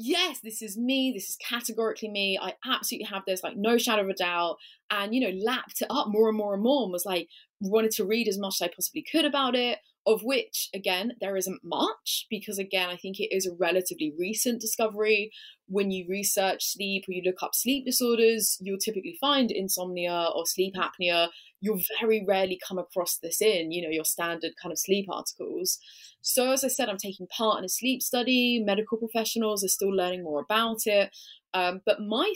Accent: British